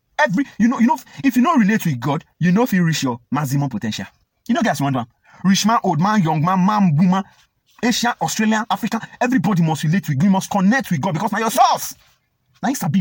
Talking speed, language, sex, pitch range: 250 wpm, English, male, 135-215 Hz